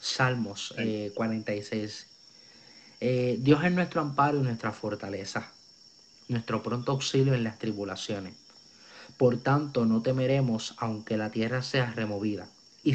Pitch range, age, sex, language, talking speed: 115-140 Hz, 30-49, male, Spanish, 125 wpm